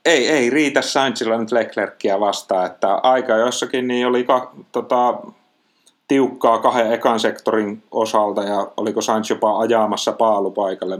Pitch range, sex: 100-110 Hz, male